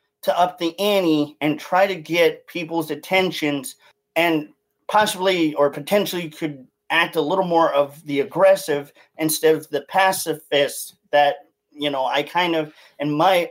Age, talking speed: 40-59, 150 wpm